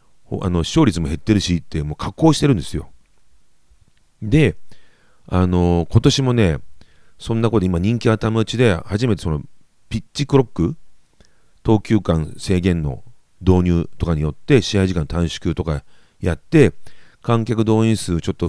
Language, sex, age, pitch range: Japanese, male, 40-59, 85-115 Hz